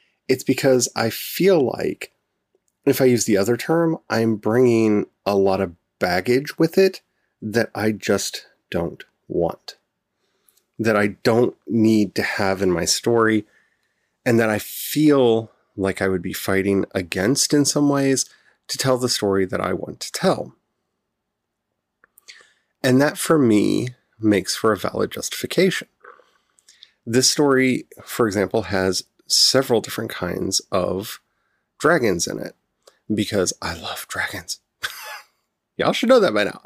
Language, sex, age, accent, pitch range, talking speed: English, male, 30-49, American, 105-140 Hz, 140 wpm